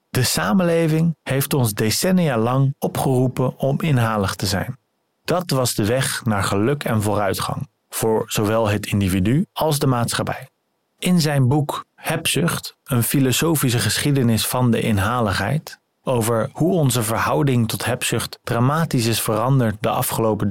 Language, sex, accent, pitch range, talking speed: Dutch, male, Dutch, 110-140 Hz, 140 wpm